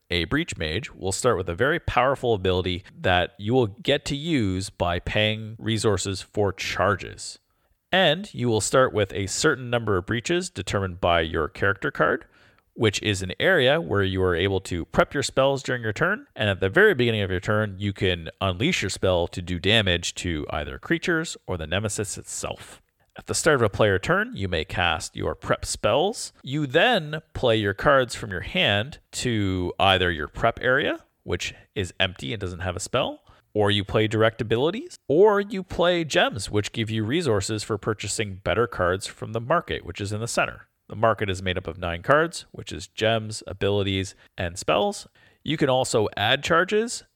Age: 40-59